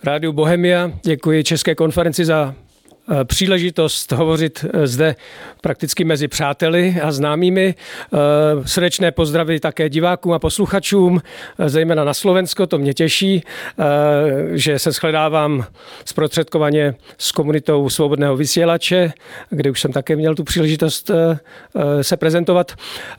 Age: 50-69